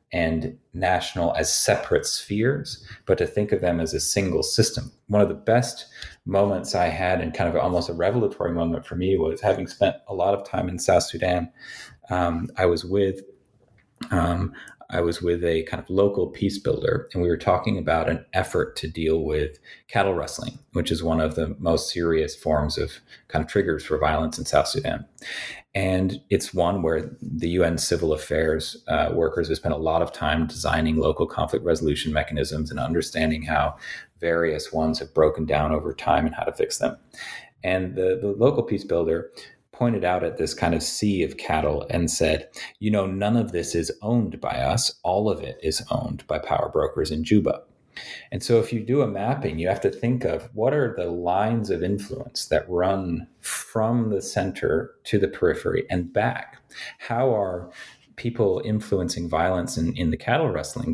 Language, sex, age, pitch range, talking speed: English, male, 30-49, 80-100 Hz, 190 wpm